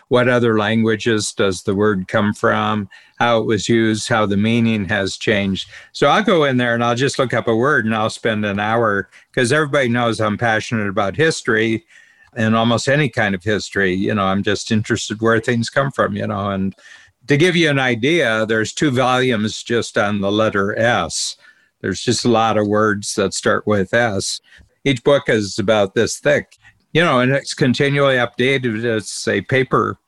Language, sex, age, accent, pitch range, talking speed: English, male, 50-69, American, 105-120 Hz, 195 wpm